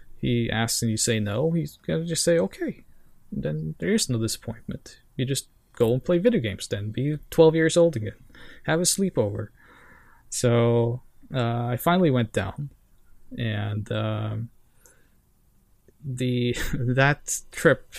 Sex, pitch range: male, 115-130 Hz